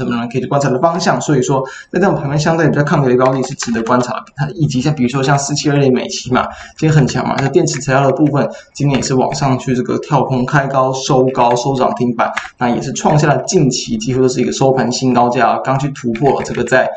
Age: 20-39